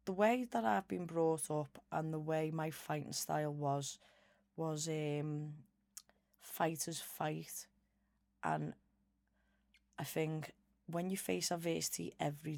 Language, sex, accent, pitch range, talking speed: English, female, British, 140-155 Hz, 125 wpm